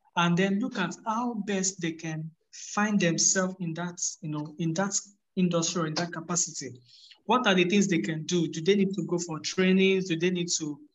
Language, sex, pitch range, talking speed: English, male, 160-195 Hz, 210 wpm